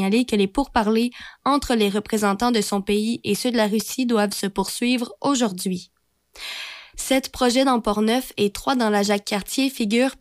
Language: French